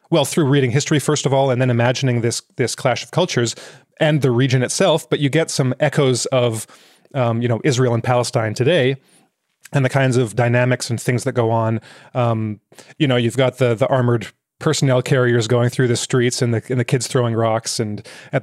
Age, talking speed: 30-49, 210 wpm